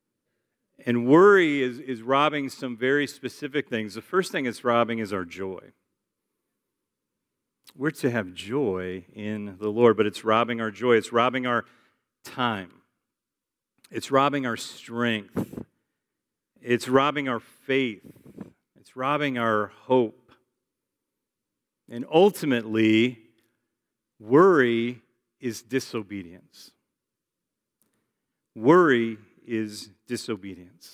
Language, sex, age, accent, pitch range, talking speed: English, male, 50-69, American, 115-145 Hz, 105 wpm